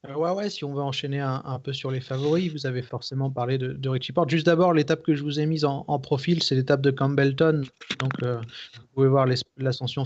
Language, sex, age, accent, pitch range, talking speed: French, male, 30-49, French, 125-140 Hz, 245 wpm